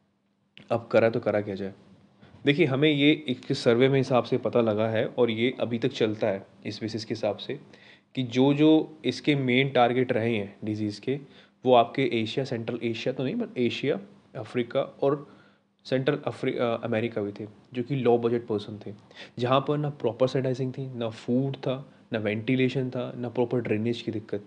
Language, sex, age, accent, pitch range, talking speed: Hindi, male, 20-39, native, 110-130 Hz, 185 wpm